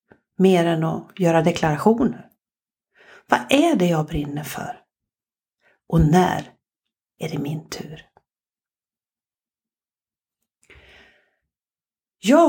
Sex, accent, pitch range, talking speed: female, native, 170-230 Hz, 85 wpm